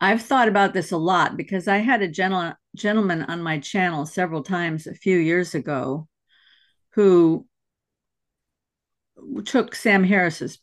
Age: 50-69